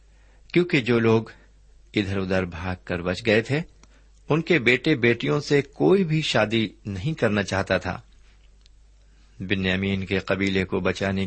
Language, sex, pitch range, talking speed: Urdu, male, 95-130 Hz, 145 wpm